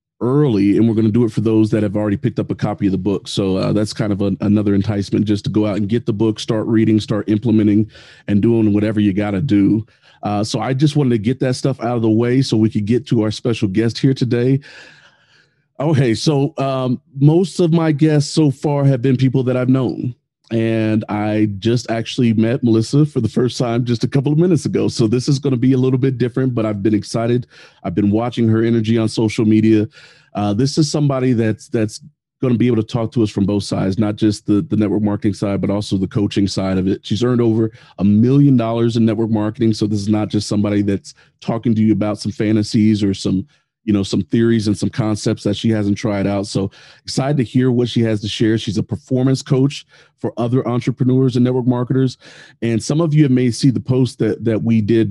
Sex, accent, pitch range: male, American, 105-130 Hz